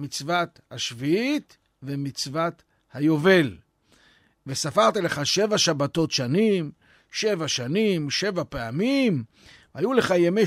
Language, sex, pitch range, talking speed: Hebrew, male, 135-200 Hz, 90 wpm